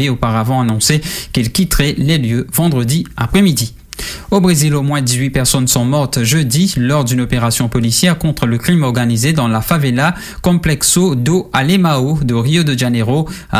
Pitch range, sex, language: 120-160 Hz, male, English